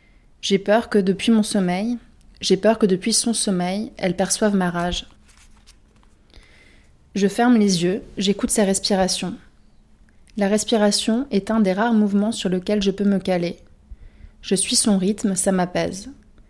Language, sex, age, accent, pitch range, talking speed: French, female, 30-49, French, 185-210 Hz, 155 wpm